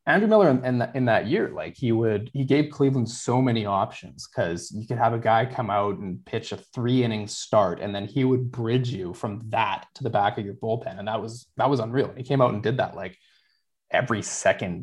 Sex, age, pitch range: male, 20-39, 105-130 Hz